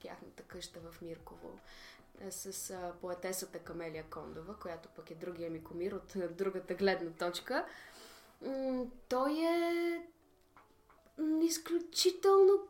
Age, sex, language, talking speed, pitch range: 20-39, female, Bulgarian, 105 wpm, 180-275 Hz